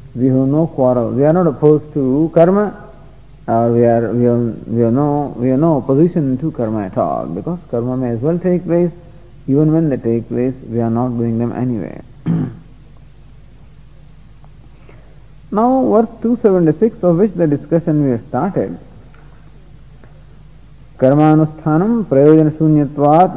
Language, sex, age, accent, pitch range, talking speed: English, male, 50-69, Indian, 140-190 Hz, 150 wpm